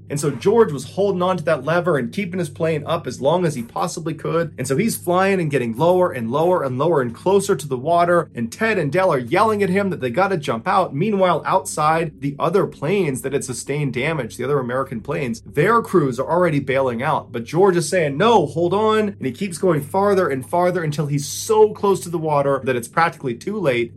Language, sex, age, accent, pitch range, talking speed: English, male, 30-49, American, 125-180 Hz, 240 wpm